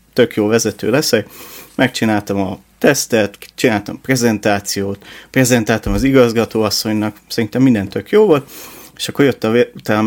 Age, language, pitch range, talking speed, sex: 30-49, Hungarian, 105-125 Hz, 145 wpm, male